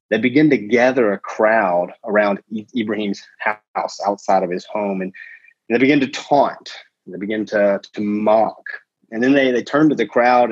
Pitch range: 105-145 Hz